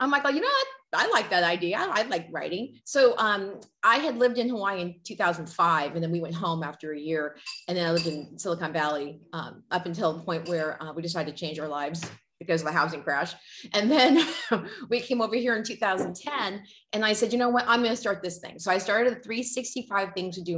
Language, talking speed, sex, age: English, 240 wpm, female, 30-49